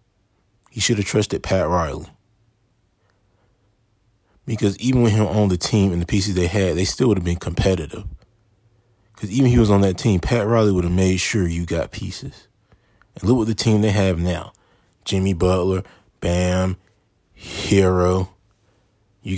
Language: English